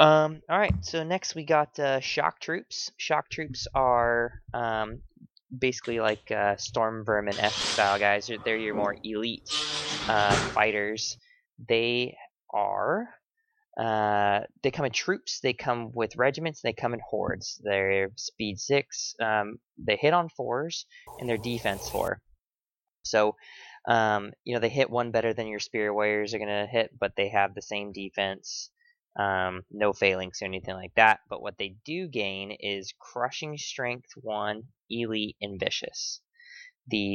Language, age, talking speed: English, 20-39, 155 wpm